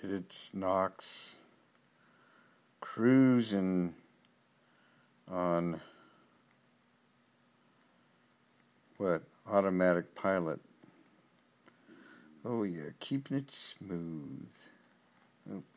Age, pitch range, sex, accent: 50-69, 90-105 Hz, male, American